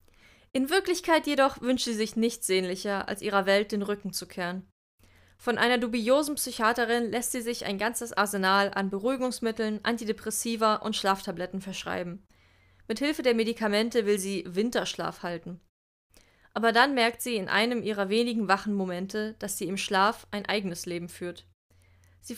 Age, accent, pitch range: 20-39, German, 185-235 Hz